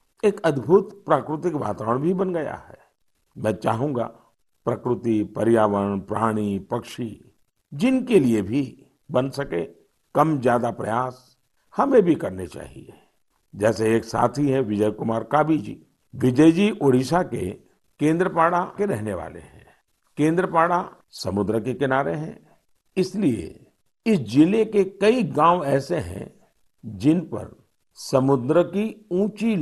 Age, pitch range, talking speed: 50-69, 115-175 Hz, 125 wpm